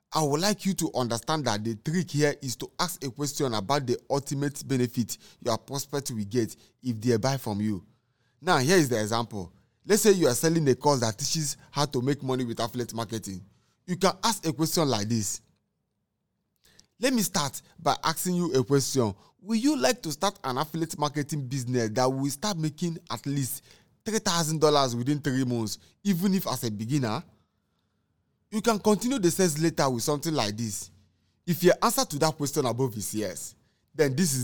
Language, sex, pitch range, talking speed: English, male, 115-160 Hz, 190 wpm